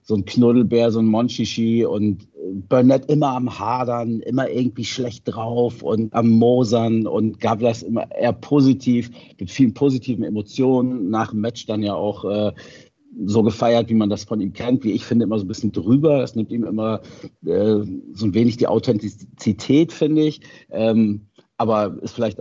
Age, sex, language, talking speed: 50-69, male, German, 180 wpm